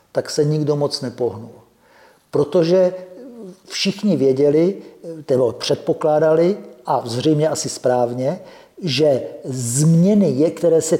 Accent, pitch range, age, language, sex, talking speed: native, 140-175 Hz, 50-69, Czech, male, 95 wpm